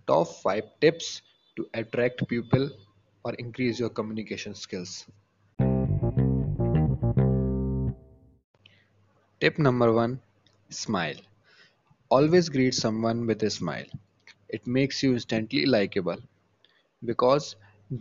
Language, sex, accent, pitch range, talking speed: Hindi, male, native, 100-130 Hz, 90 wpm